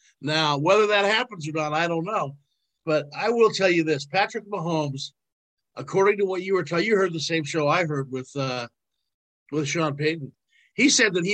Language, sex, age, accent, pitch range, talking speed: English, male, 50-69, American, 145-195 Hz, 205 wpm